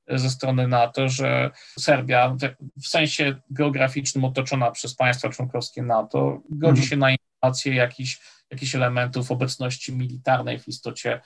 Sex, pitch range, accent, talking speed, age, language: male, 125-140 Hz, native, 135 wpm, 40-59, Polish